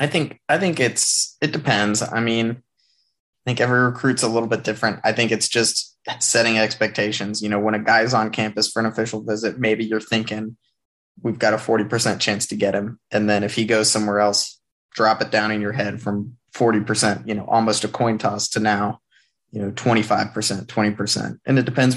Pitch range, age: 105-120 Hz, 20-39